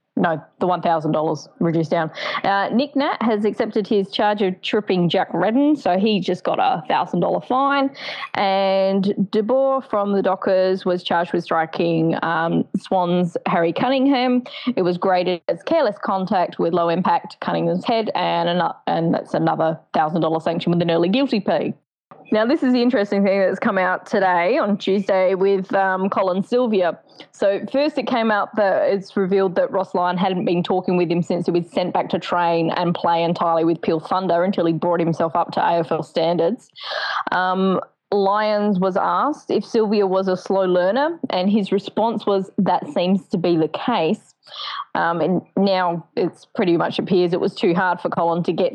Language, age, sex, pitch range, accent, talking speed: English, 20-39, female, 170-210 Hz, Australian, 180 wpm